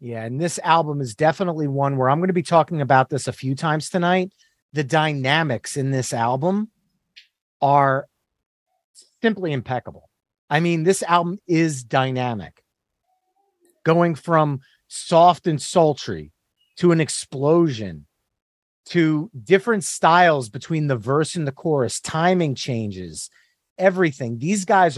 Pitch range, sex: 135-180 Hz, male